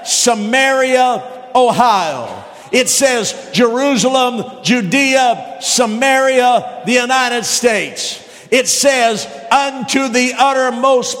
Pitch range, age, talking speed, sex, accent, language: 230-270 Hz, 50-69, 80 wpm, male, American, English